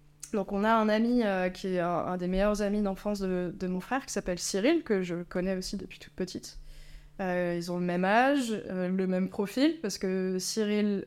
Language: French